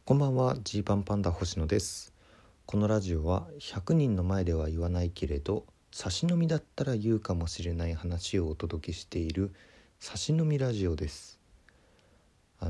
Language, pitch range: Japanese, 80-105 Hz